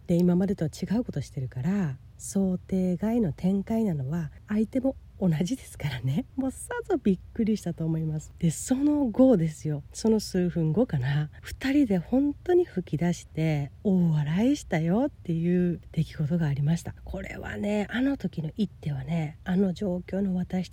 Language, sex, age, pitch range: Japanese, female, 40-59, 160-230 Hz